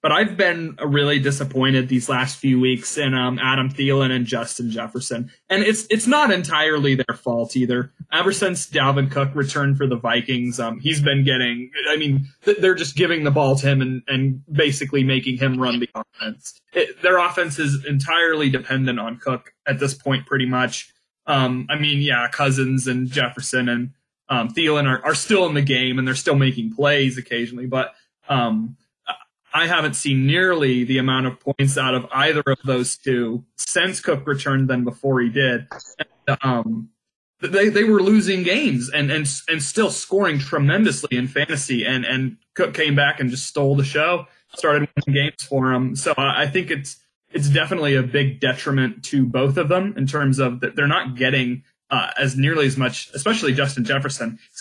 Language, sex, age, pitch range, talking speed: English, male, 20-39, 130-145 Hz, 185 wpm